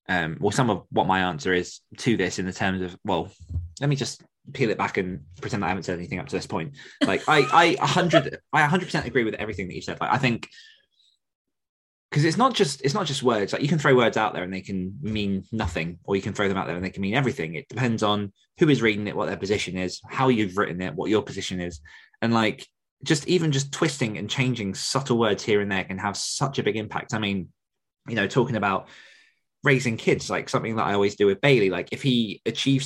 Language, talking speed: English, 250 wpm